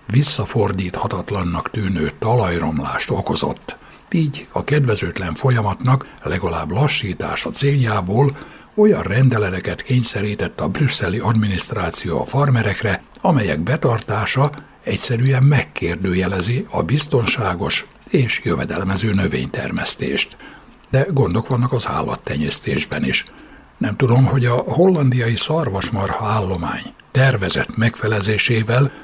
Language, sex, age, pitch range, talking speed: Hungarian, male, 60-79, 100-135 Hz, 90 wpm